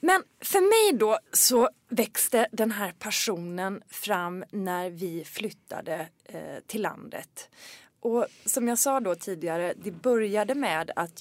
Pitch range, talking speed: 175-245 Hz, 140 wpm